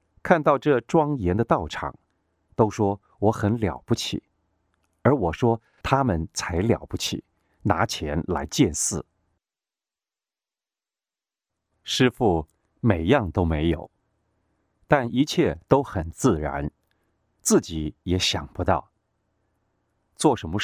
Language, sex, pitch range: Chinese, male, 85-110 Hz